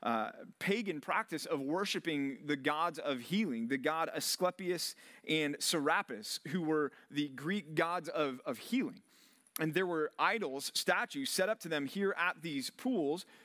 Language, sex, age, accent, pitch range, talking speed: English, male, 30-49, American, 150-215 Hz, 155 wpm